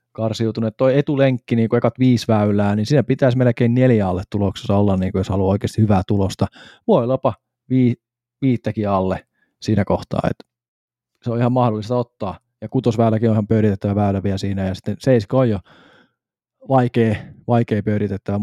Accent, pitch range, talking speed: native, 105-120 Hz, 170 wpm